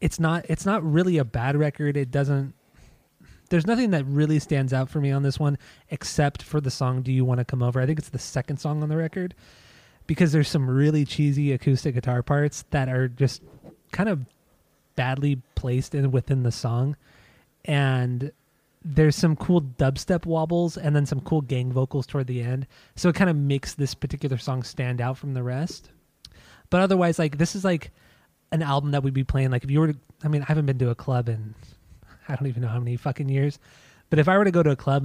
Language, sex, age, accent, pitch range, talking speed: English, male, 20-39, American, 130-155 Hz, 220 wpm